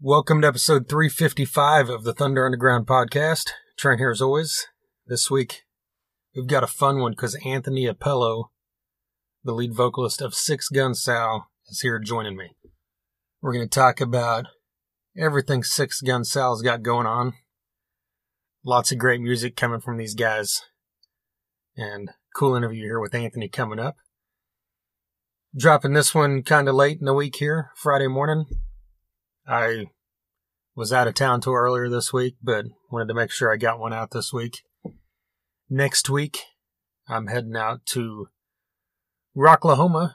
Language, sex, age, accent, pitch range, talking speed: English, male, 30-49, American, 115-135 Hz, 150 wpm